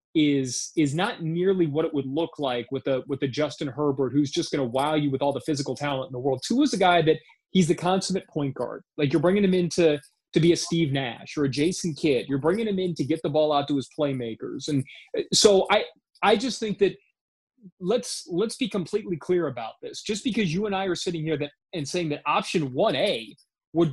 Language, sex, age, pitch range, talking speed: English, male, 30-49, 145-185 Hz, 240 wpm